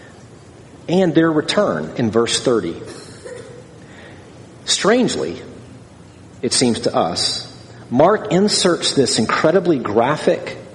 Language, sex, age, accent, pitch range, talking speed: English, male, 40-59, American, 115-165 Hz, 90 wpm